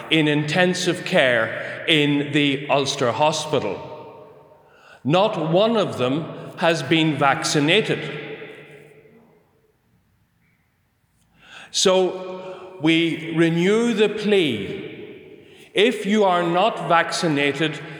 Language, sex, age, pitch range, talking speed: English, male, 40-59, 150-195 Hz, 80 wpm